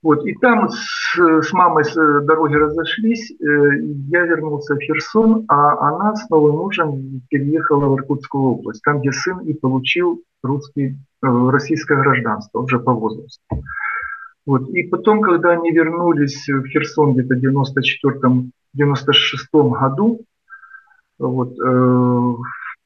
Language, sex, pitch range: Ukrainian, male, 130-170 Hz